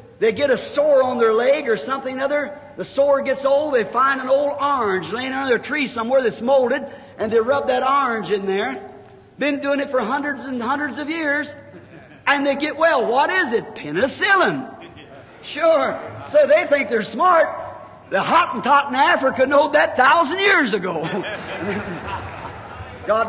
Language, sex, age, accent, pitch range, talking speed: English, male, 50-69, American, 250-310 Hz, 175 wpm